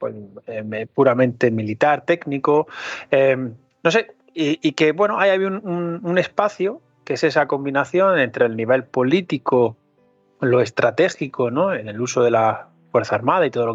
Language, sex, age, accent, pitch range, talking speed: Spanish, male, 30-49, Spanish, 120-150 Hz, 170 wpm